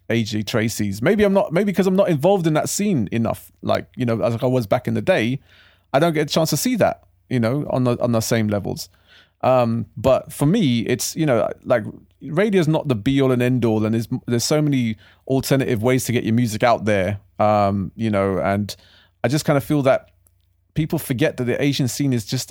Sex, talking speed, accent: male, 235 wpm, British